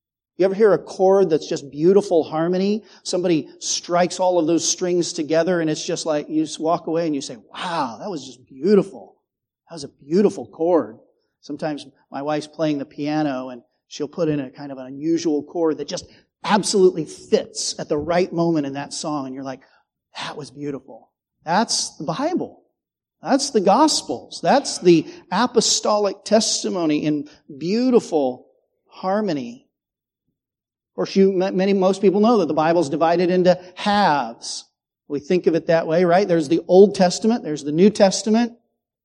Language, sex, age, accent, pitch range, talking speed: English, male, 40-59, American, 155-205 Hz, 170 wpm